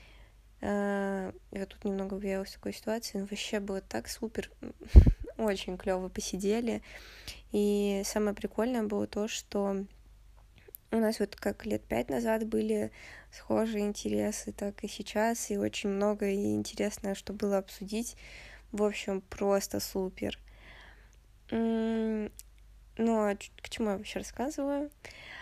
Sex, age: female, 20-39